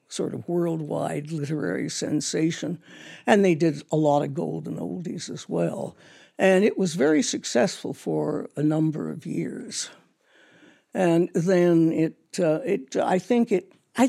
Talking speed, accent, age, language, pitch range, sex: 145 wpm, American, 60-79, English, 150-195 Hz, female